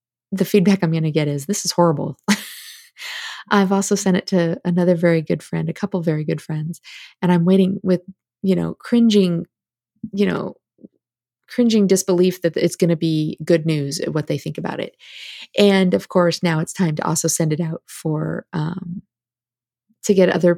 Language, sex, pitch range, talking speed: English, female, 165-195 Hz, 185 wpm